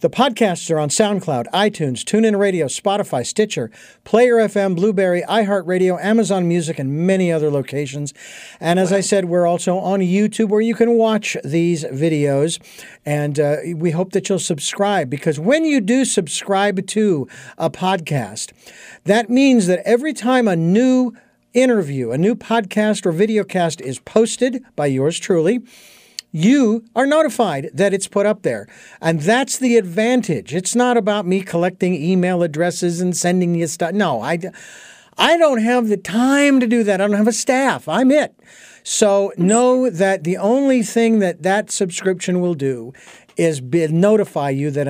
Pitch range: 165-225 Hz